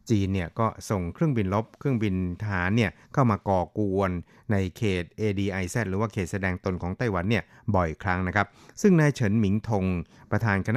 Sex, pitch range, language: male, 95-110 Hz, Thai